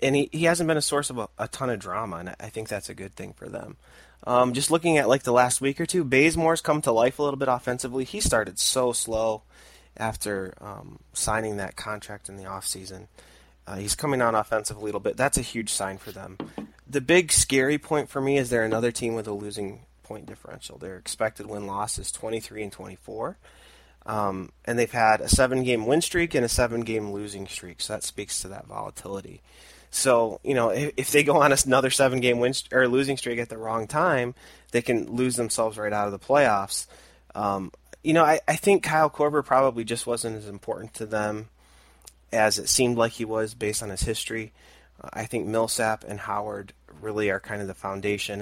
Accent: American